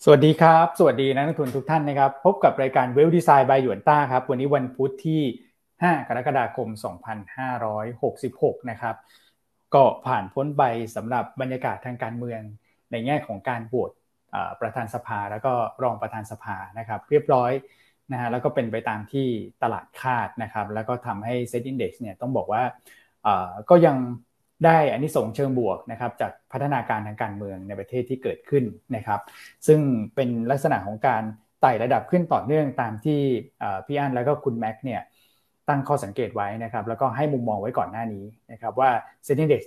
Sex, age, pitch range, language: male, 20-39, 115-140 Hz, Thai